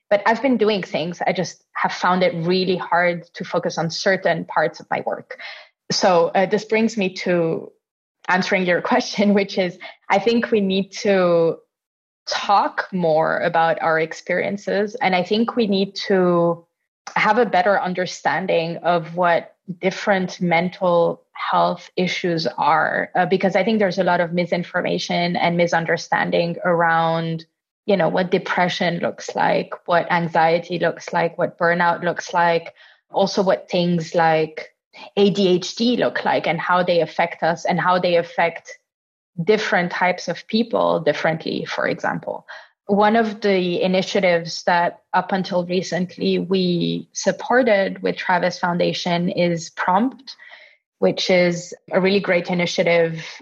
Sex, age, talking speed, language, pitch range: female, 20-39, 145 wpm, English, 170-195 Hz